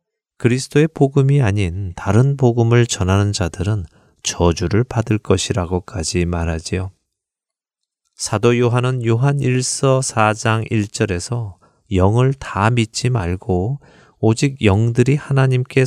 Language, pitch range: Korean, 95-125 Hz